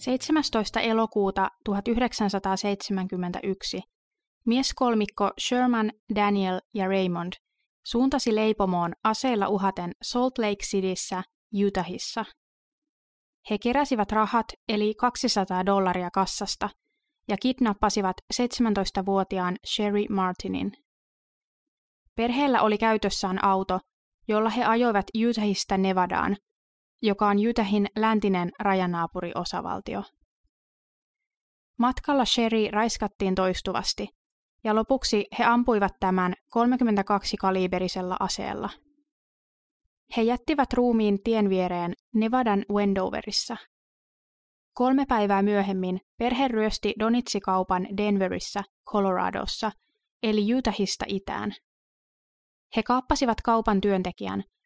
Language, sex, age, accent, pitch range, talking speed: Finnish, female, 20-39, native, 195-240 Hz, 85 wpm